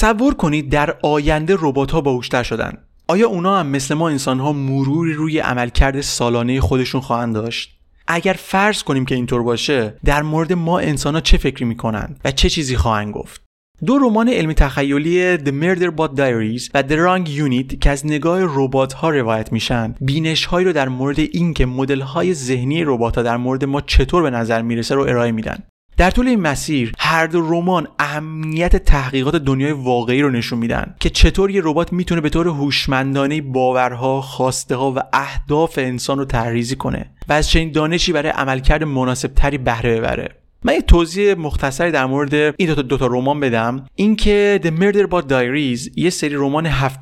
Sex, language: male, Persian